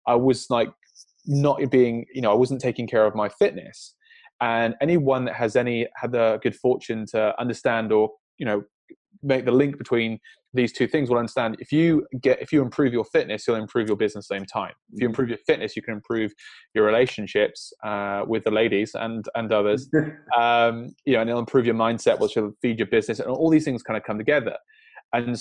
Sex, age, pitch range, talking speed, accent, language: male, 20-39, 110-140 Hz, 215 wpm, British, English